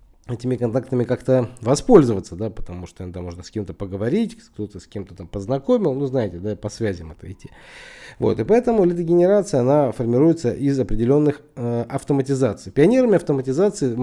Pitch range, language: 115-160 Hz, Russian